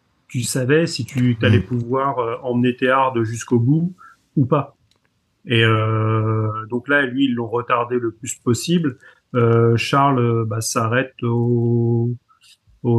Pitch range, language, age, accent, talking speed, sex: 110-130 Hz, French, 40-59, French, 145 wpm, male